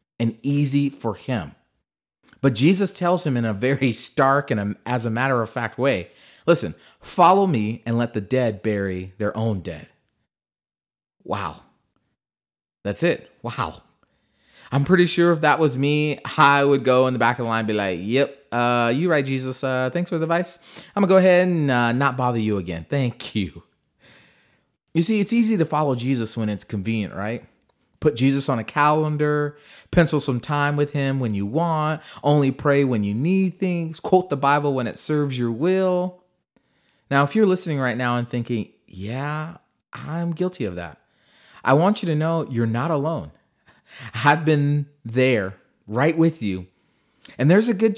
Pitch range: 120-160 Hz